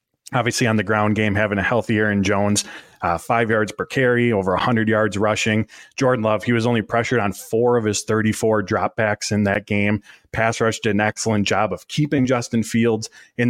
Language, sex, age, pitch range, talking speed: English, male, 20-39, 105-120 Hz, 200 wpm